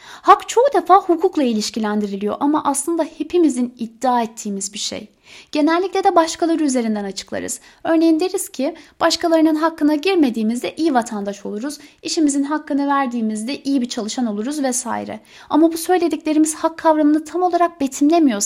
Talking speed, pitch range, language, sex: 135 wpm, 250-335 Hz, Turkish, female